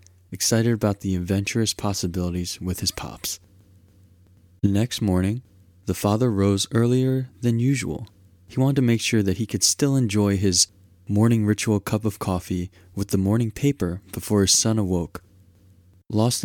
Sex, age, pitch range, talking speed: male, 20-39, 95-120 Hz, 155 wpm